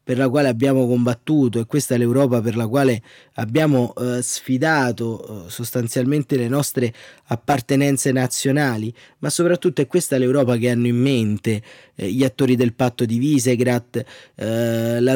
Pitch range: 115-130 Hz